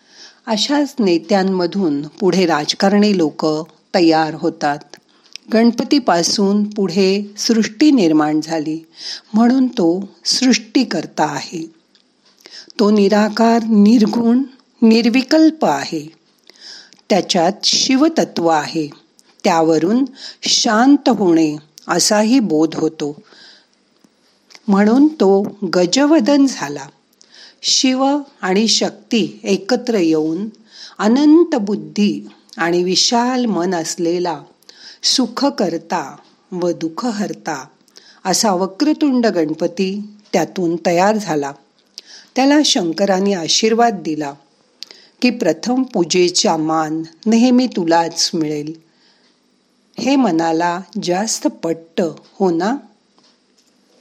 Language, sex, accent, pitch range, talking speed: Marathi, female, native, 165-235 Hz, 65 wpm